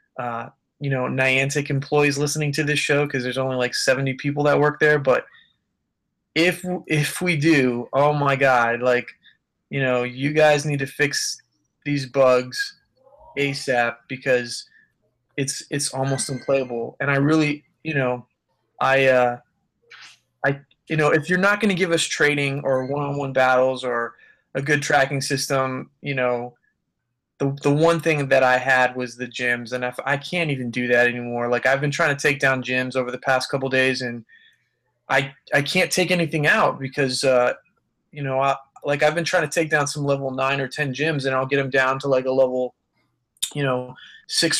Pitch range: 130-150 Hz